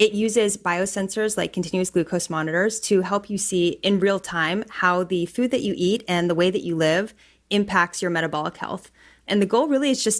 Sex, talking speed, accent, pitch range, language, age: female, 210 wpm, American, 180-210 Hz, English, 30-49